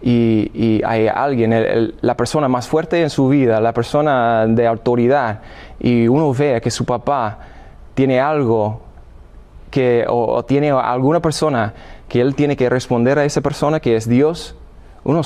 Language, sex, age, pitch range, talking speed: Spanish, male, 20-39, 115-140 Hz, 170 wpm